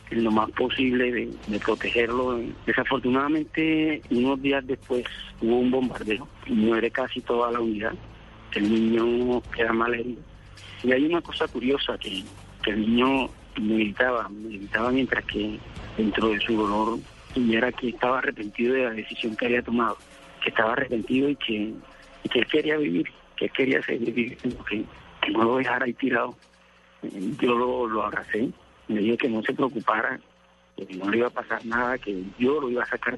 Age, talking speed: 50-69, 175 wpm